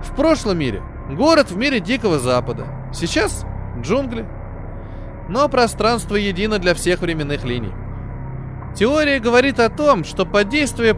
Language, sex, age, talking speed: Russian, male, 20-39, 130 wpm